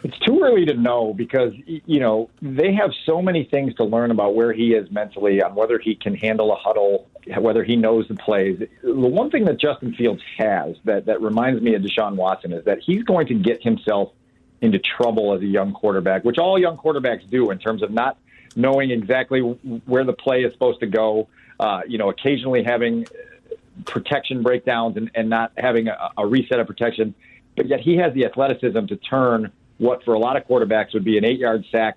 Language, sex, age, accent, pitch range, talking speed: English, male, 50-69, American, 110-135 Hz, 210 wpm